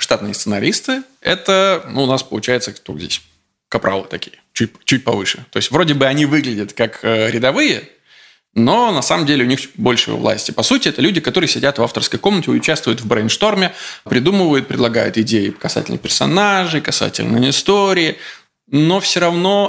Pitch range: 110-155 Hz